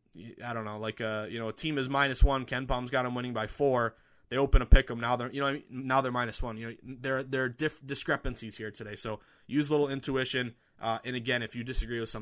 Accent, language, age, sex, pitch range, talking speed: American, English, 20-39, male, 115-145 Hz, 270 wpm